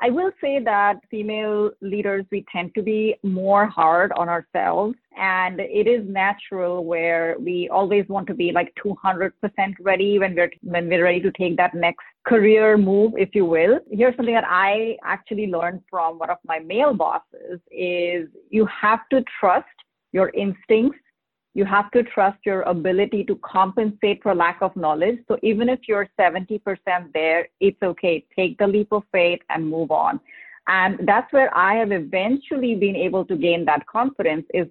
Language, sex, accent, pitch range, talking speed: English, female, Indian, 170-210 Hz, 175 wpm